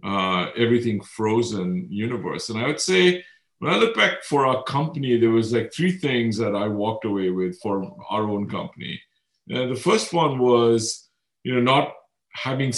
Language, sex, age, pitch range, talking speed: English, male, 50-69, 115-145 Hz, 175 wpm